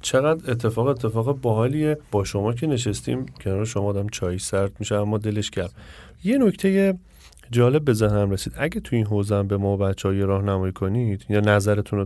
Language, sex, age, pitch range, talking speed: Persian, male, 30-49, 100-130 Hz, 180 wpm